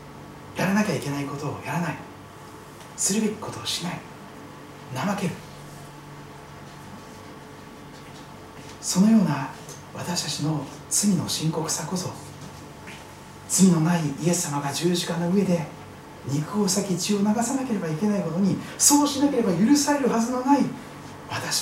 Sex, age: male, 40-59